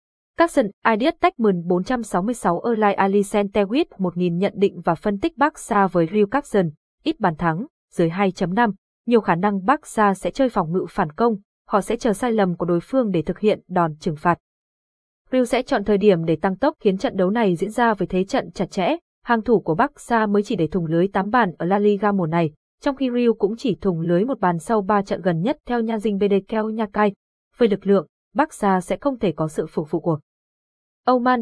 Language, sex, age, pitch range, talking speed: Vietnamese, female, 20-39, 185-235 Hz, 215 wpm